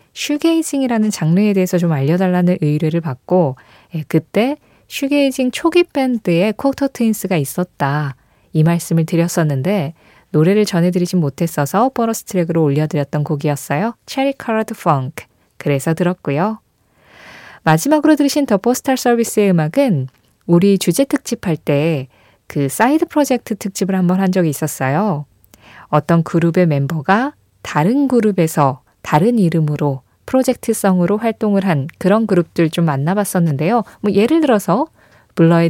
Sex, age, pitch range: female, 20-39, 150-220 Hz